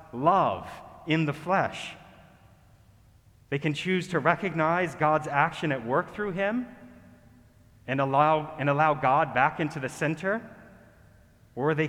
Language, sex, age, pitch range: English, male, 30-49, 115-150 Hz